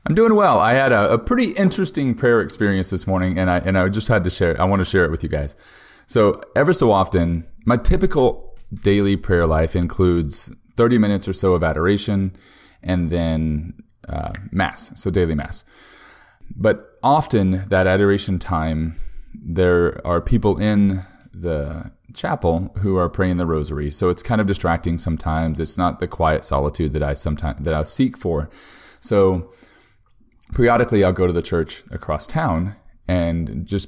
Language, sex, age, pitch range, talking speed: English, male, 30-49, 80-100 Hz, 175 wpm